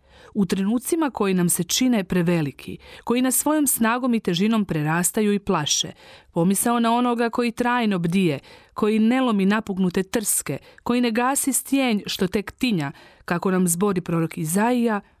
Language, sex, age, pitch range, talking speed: Croatian, female, 40-59, 170-230 Hz, 155 wpm